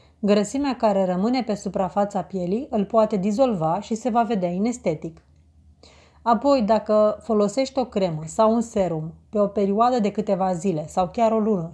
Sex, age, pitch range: female, 30-49, 185-225 Hz